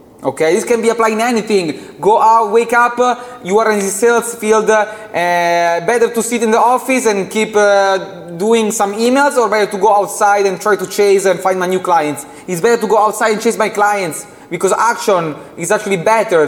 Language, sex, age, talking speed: English, male, 20-39, 210 wpm